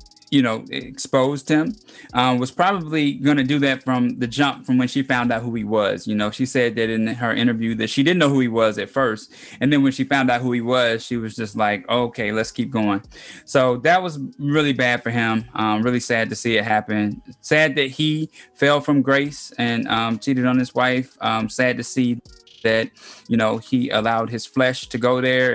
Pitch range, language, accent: 115-140 Hz, English, American